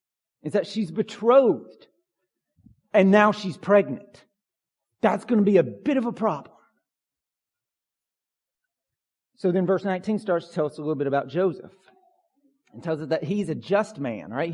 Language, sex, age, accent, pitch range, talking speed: English, male, 40-59, American, 175-215 Hz, 160 wpm